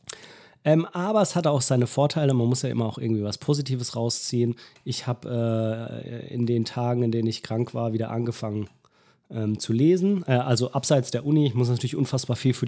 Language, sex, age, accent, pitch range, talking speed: German, male, 30-49, German, 120-145 Hz, 205 wpm